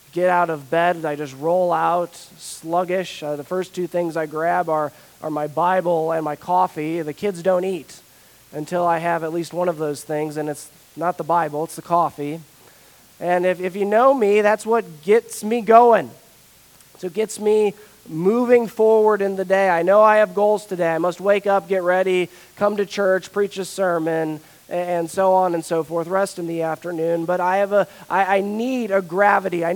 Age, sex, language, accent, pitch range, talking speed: 20-39, male, English, American, 155-195 Hz, 205 wpm